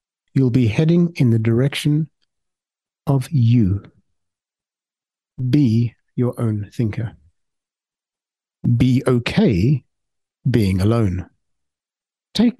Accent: British